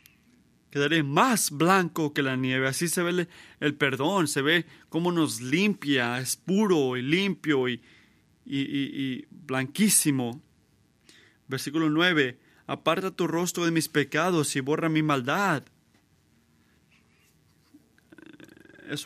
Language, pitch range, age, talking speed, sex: Spanish, 130-160 Hz, 30-49, 125 wpm, male